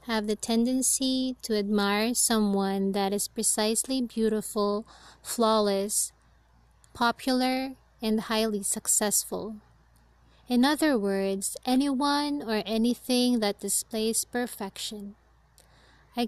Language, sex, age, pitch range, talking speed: English, female, 20-39, 200-235 Hz, 90 wpm